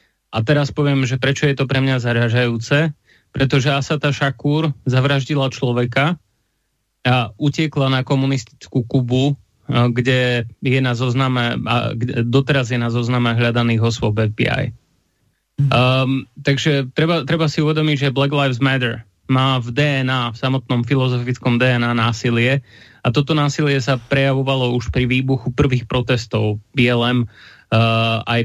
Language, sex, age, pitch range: Slovak, male, 20-39, 120-135 Hz